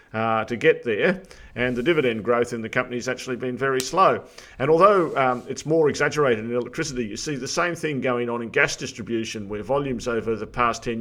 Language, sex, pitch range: English, male, 115-135 Hz